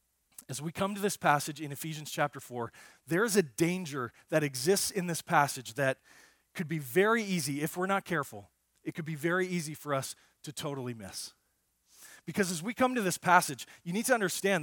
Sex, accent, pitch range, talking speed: male, American, 155-205 Hz, 200 wpm